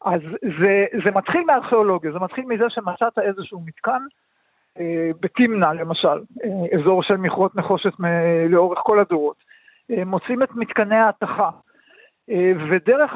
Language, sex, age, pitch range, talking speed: Hebrew, male, 50-69, 185-235 Hz, 130 wpm